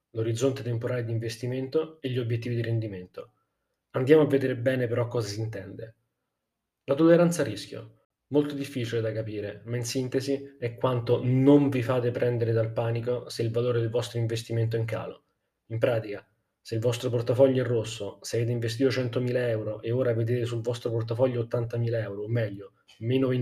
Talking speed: 175 wpm